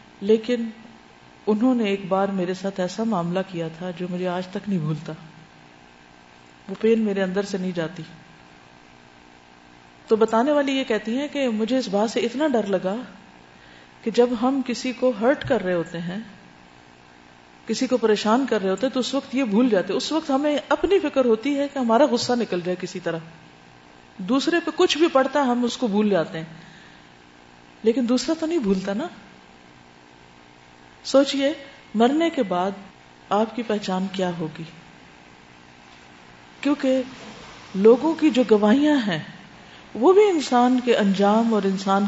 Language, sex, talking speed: Urdu, female, 165 wpm